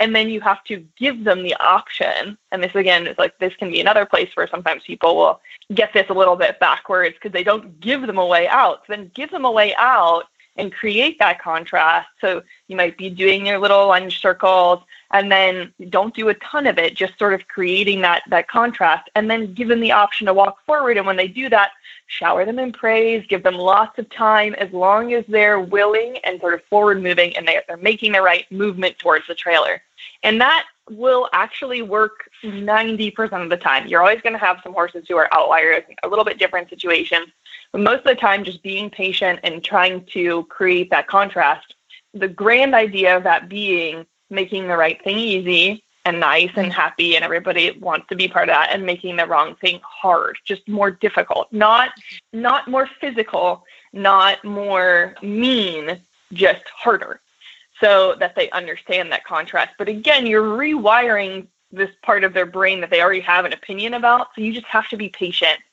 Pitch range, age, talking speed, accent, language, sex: 180-220 Hz, 20-39, 205 wpm, American, English, female